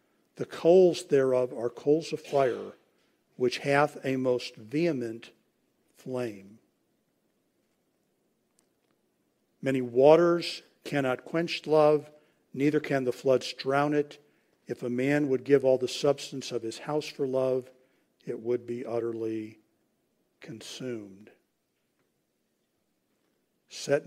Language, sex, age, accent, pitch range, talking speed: English, male, 50-69, American, 120-150 Hz, 105 wpm